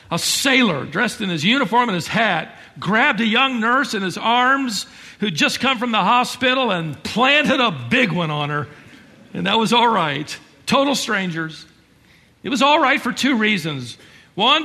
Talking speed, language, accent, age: 180 wpm, English, American, 50-69